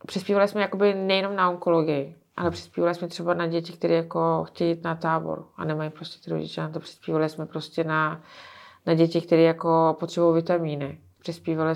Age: 20-39